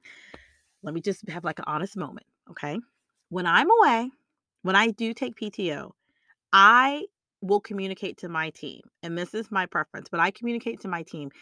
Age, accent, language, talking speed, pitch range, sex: 30-49, American, English, 180 wpm, 170-225 Hz, female